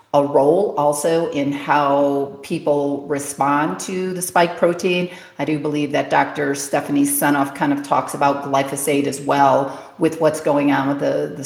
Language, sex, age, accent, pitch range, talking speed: English, female, 40-59, American, 140-170 Hz, 170 wpm